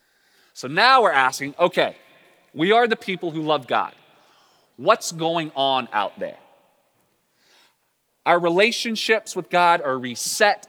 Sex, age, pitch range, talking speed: male, 30-49, 145-200 Hz, 130 wpm